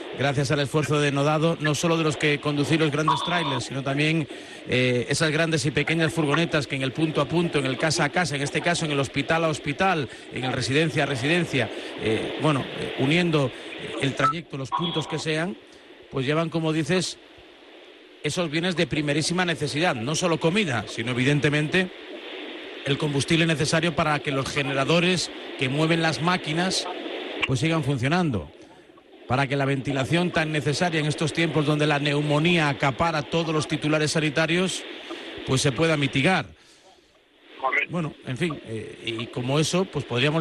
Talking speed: 170 wpm